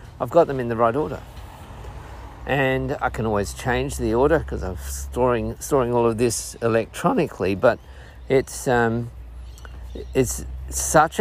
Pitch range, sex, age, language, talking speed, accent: 95-125 Hz, male, 50-69, English, 145 wpm, Australian